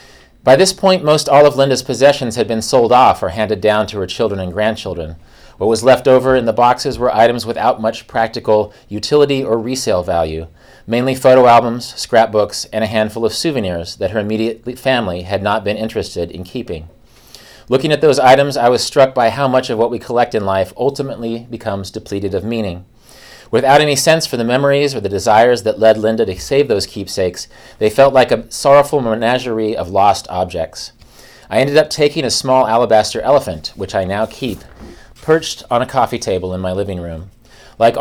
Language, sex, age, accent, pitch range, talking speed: English, male, 40-59, American, 110-135 Hz, 195 wpm